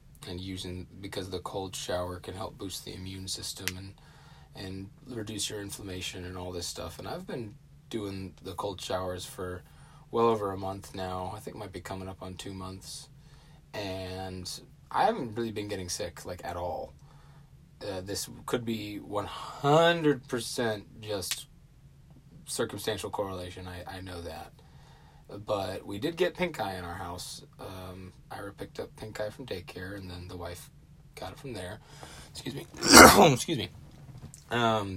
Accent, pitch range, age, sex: American, 95-130 Hz, 30-49, male